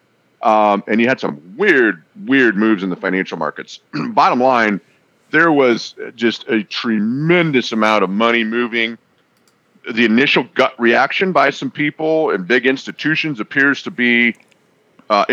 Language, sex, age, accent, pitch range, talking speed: English, male, 40-59, American, 110-135 Hz, 150 wpm